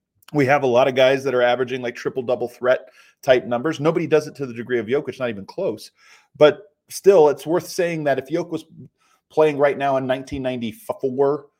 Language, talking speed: English, 200 wpm